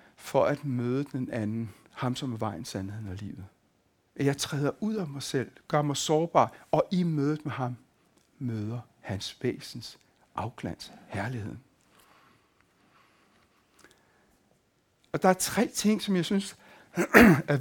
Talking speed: 135 wpm